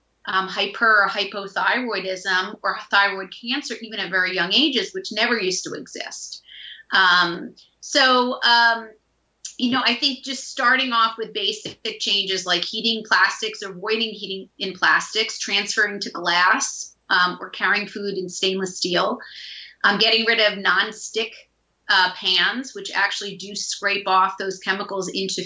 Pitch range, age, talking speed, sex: 190-220 Hz, 30-49, 150 wpm, female